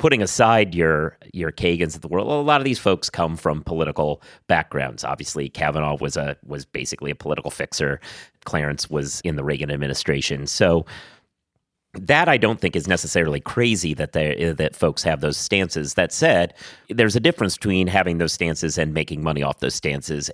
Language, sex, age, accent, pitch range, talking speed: English, male, 30-49, American, 75-95 Hz, 185 wpm